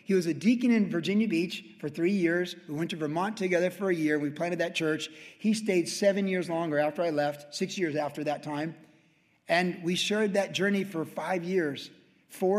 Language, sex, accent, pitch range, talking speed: English, male, American, 155-190 Hz, 210 wpm